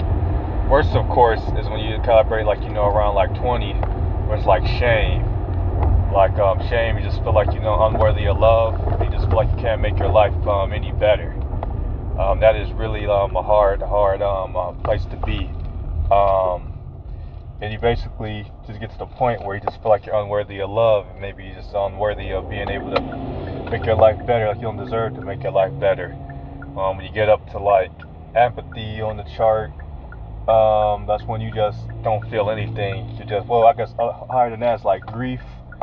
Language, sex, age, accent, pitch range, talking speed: English, male, 20-39, American, 95-110 Hz, 210 wpm